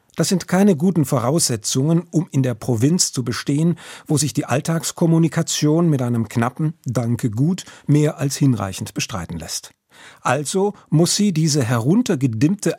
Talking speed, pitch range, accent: 135 wpm, 120-155 Hz, German